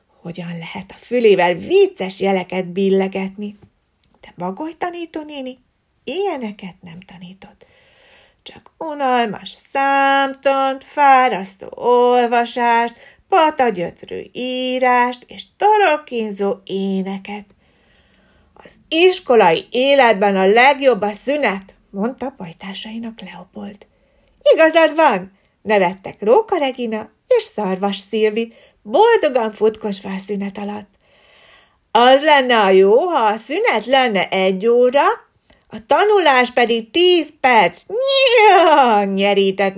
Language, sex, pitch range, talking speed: Hungarian, female, 200-295 Hz, 95 wpm